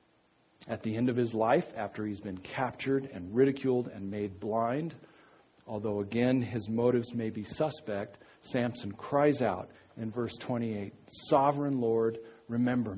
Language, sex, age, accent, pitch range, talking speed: English, male, 40-59, American, 100-125 Hz, 145 wpm